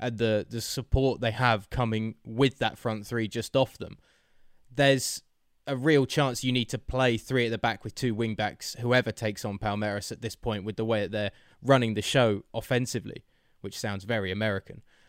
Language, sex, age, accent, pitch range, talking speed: English, male, 20-39, British, 110-130 Hz, 195 wpm